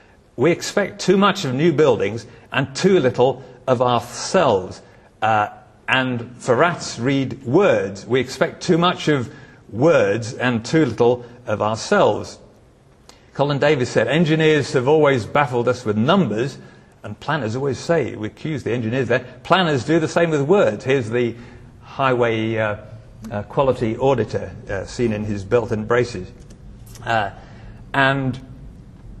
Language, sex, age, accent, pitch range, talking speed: English, male, 50-69, British, 115-145 Hz, 145 wpm